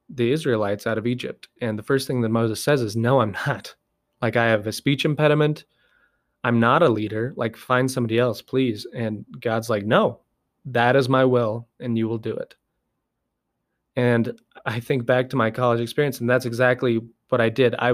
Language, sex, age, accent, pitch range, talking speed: English, male, 20-39, American, 115-125 Hz, 195 wpm